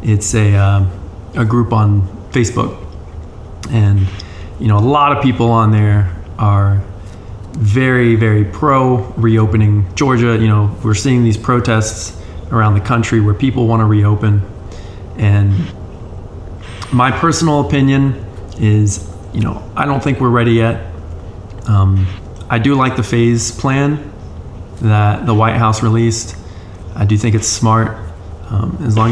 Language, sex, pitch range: English, male, 100-120 Hz